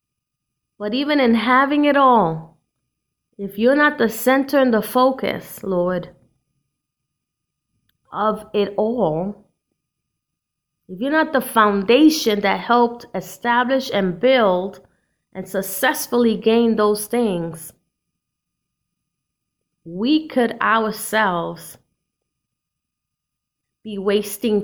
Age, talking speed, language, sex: 20-39, 95 wpm, English, female